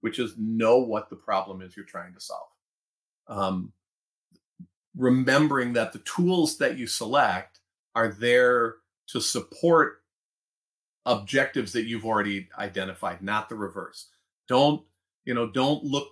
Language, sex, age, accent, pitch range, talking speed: English, male, 40-59, American, 100-130 Hz, 135 wpm